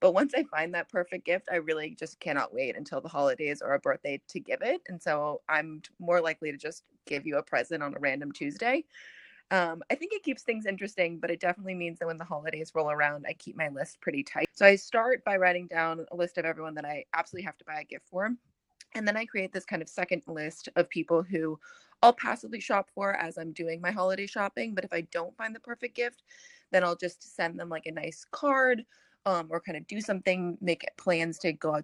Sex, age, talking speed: female, 20-39, 240 wpm